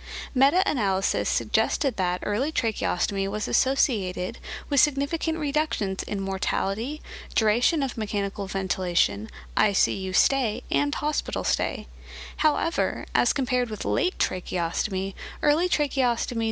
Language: English